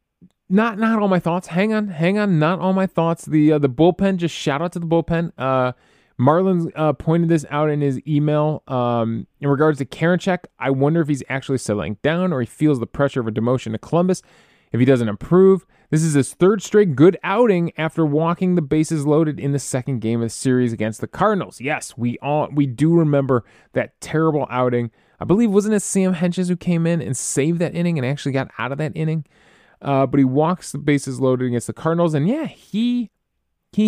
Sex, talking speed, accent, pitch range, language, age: male, 220 wpm, American, 130-180 Hz, English, 20-39